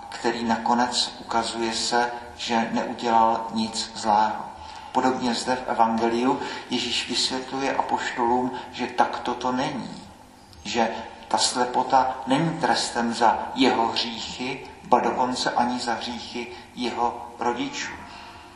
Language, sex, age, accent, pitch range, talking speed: Czech, male, 50-69, native, 120-145 Hz, 110 wpm